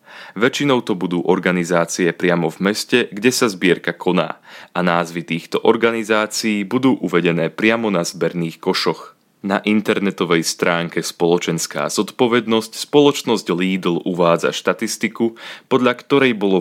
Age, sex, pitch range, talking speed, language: 30-49, male, 85-110 Hz, 120 wpm, Slovak